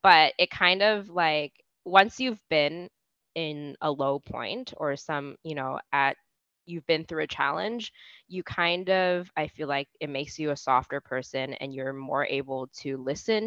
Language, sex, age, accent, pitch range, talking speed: English, female, 20-39, American, 145-180 Hz, 180 wpm